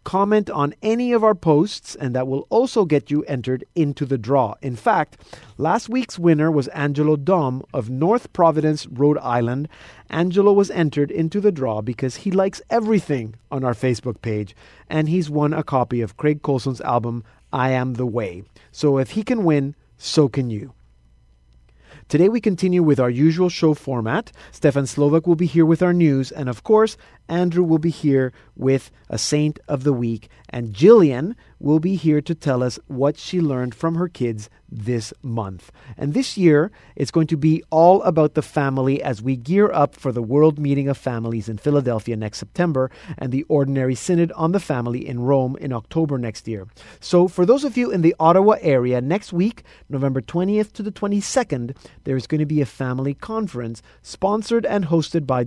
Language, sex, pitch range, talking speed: English, male, 125-170 Hz, 190 wpm